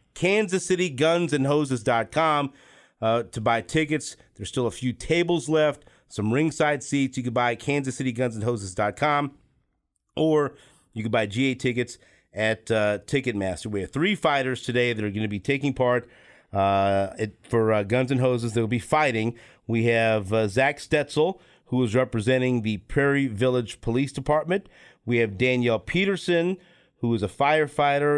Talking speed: 155 wpm